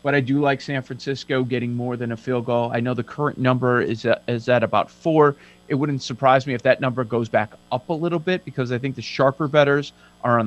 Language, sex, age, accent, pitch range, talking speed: English, male, 40-59, American, 120-145 Hz, 250 wpm